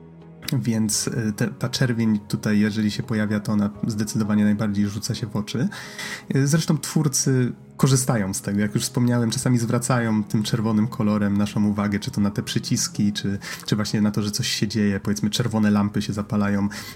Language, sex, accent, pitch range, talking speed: Polish, male, native, 105-130 Hz, 175 wpm